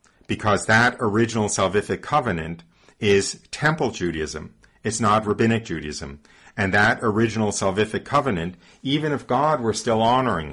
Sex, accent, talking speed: male, American, 130 wpm